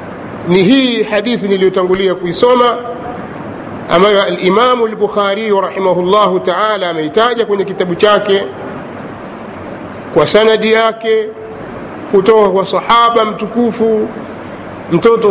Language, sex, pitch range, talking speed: Swahili, male, 190-230 Hz, 85 wpm